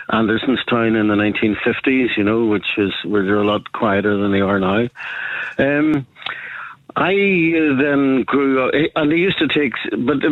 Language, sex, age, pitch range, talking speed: English, male, 50-69, 100-115 Hz, 175 wpm